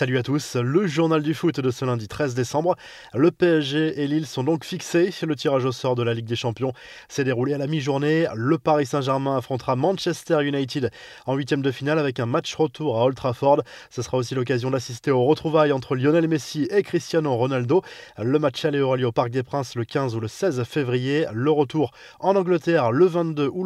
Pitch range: 130-160 Hz